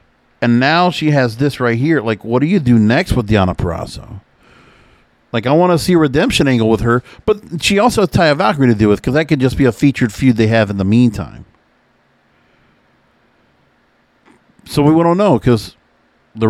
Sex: male